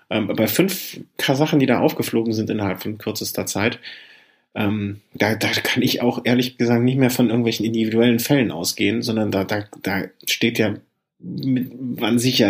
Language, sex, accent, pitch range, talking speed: German, male, German, 100-120 Hz, 160 wpm